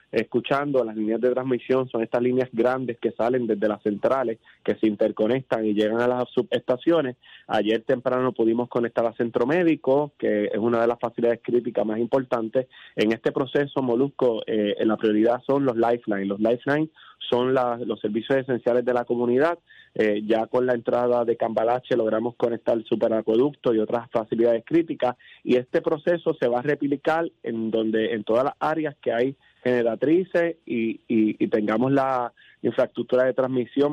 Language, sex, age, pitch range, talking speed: Spanish, male, 20-39, 115-140 Hz, 175 wpm